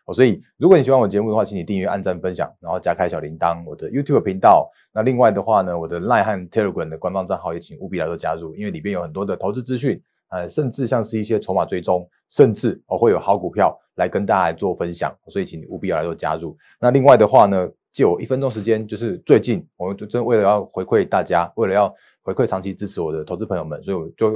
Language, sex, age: Chinese, male, 20-39